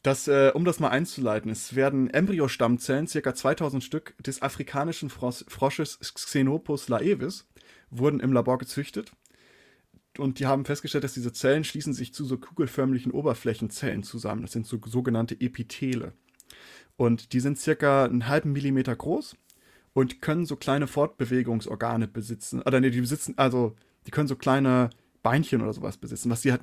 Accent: German